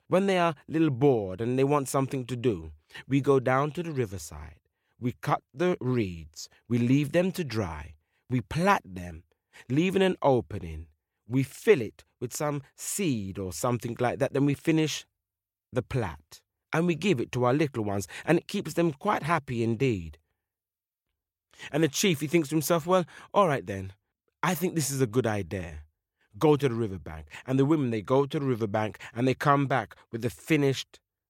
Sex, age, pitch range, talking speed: male, 30-49, 100-160 Hz, 190 wpm